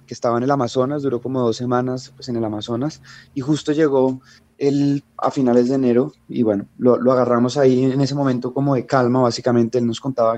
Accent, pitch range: Colombian, 120-140 Hz